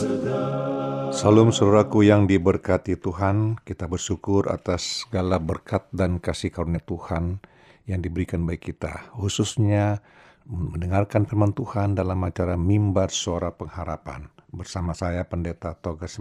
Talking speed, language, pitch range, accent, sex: 115 wpm, Indonesian, 90-110 Hz, native, male